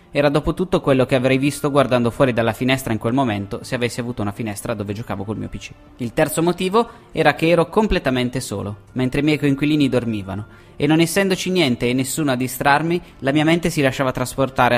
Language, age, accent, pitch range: Italian, 20-39, native, 115-145 Hz